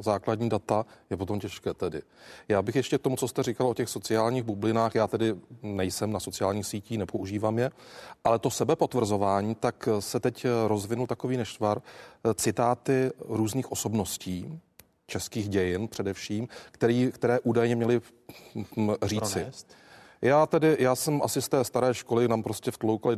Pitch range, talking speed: 105-125 Hz, 150 wpm